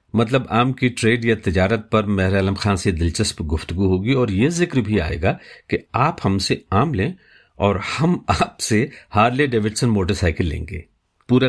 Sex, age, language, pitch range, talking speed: male, 50-69, Urdu, 85-105 Hz, 195 wpm